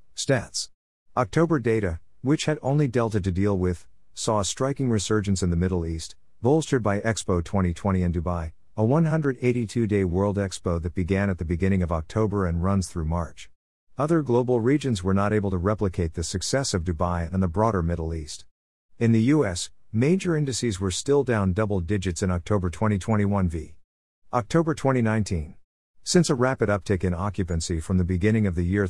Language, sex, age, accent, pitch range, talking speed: English, male, 50-69, American, 90-115 Hz, 175 wpm